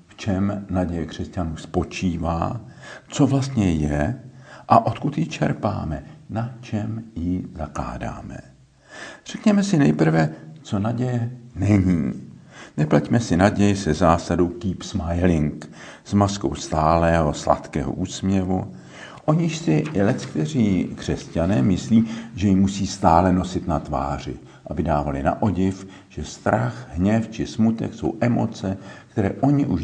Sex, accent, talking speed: male, native, 125 wpm